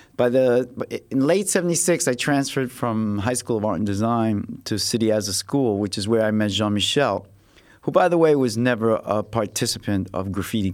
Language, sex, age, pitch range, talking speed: English, male, 50-69, 105-130 Hz, 200 wpm